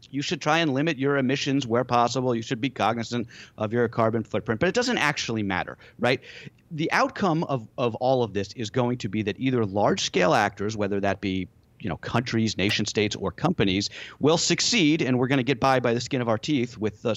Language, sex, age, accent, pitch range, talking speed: English, male, 40-59, American, 105-135 Hz, 220 wpm